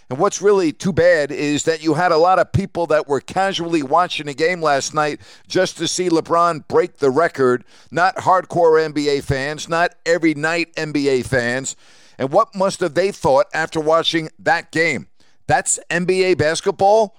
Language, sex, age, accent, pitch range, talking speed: English, male, 50-69, American, 150-185 Hz, 170 wpm